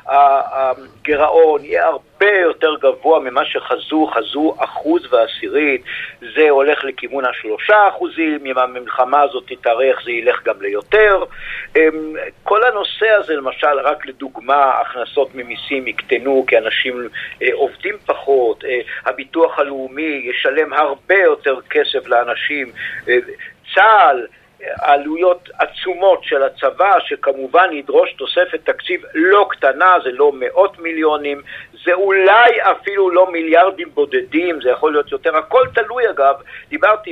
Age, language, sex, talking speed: 50-69, Hebrew, male, 115 wpm